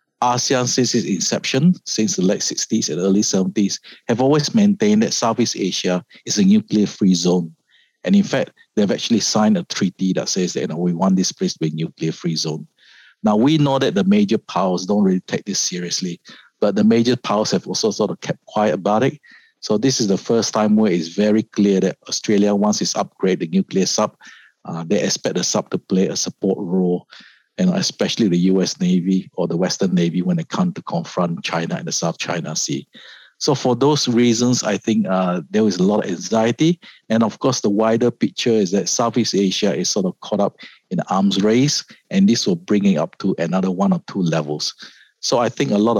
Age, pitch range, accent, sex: 50-69, 95-150 Hz, Malaysian, male